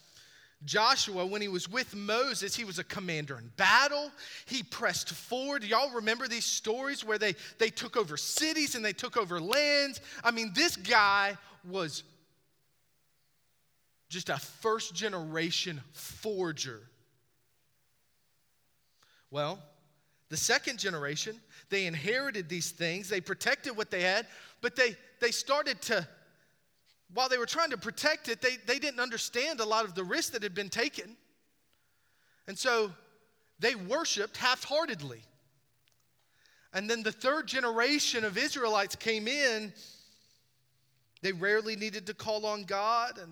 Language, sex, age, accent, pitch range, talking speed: English, male, 30-49, American, 150-235 Hz, 140 wpm